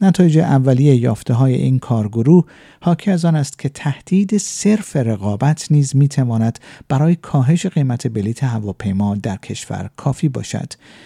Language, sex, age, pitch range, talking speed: Persian, male, 50-69, 120-170 Hz, 130 wpm